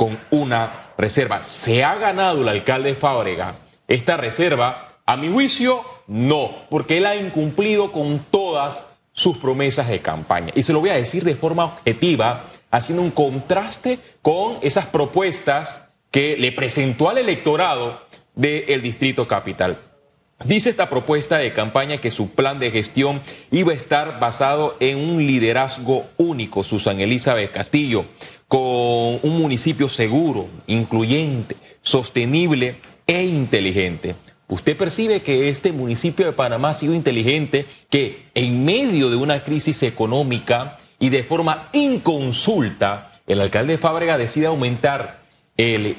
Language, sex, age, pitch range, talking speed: Spanish, male, 30-49, 120-160 Hz, 135 wpm